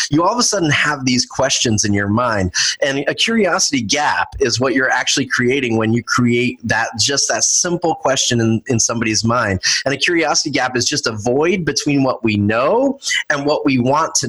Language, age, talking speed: English, 30-49, 205 wpm